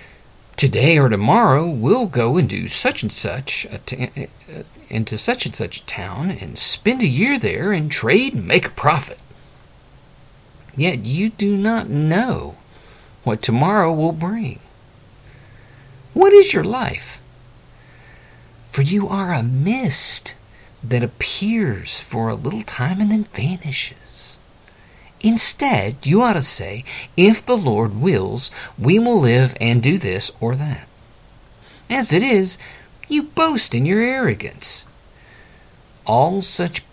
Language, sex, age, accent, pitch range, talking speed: English, male, 50-69, American, 115-185 Hz, 140 wpm